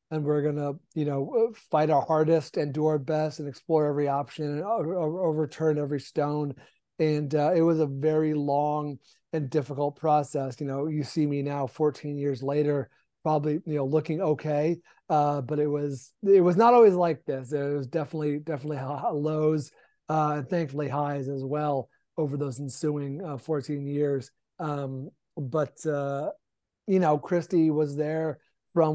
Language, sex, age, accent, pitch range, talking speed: English, male, 30-49, American, 140-160 Hz, 170 wpm